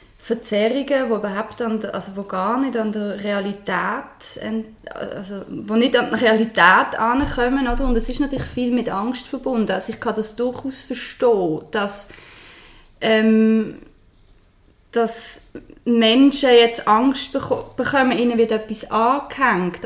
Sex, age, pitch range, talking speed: female, 20-39, 210-245 Hz, 135 wpm